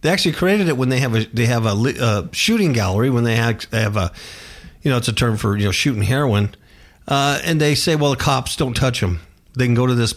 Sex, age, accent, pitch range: male, 50-69, American, 100-135 Hz